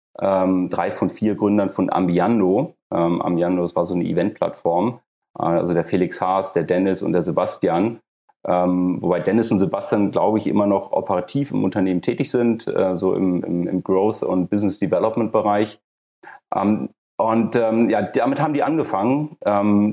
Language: German